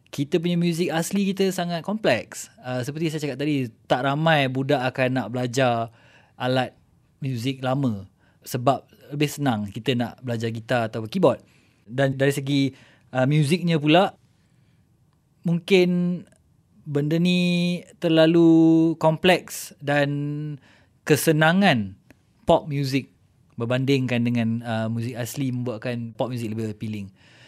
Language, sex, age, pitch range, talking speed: English, male, 20-39, 120-155 Hz, 120 wpm